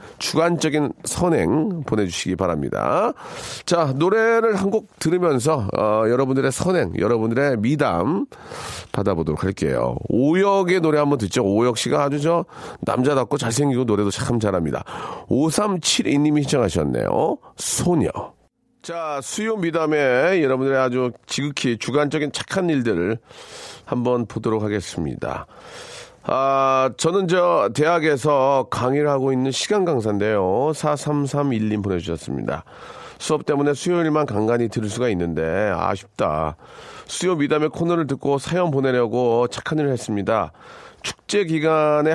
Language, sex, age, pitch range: Korean, male, 40-59, 115-155 Hz